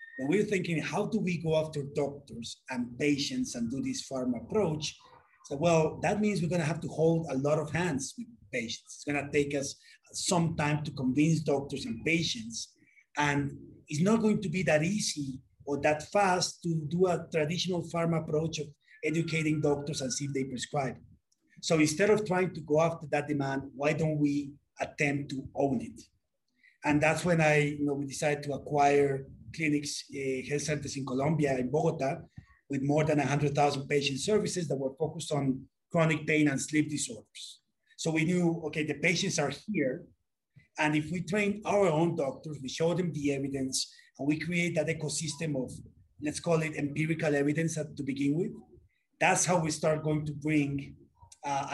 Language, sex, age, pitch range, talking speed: English, male, 30-49, 140-165 Hz, 190 wpm